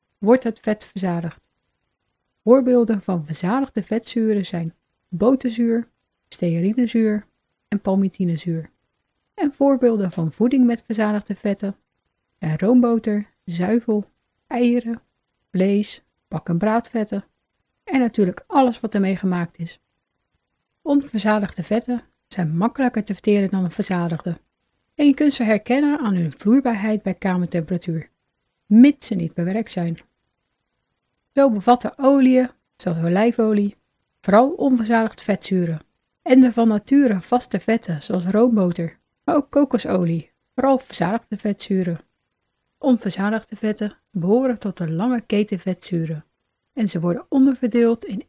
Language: Dutch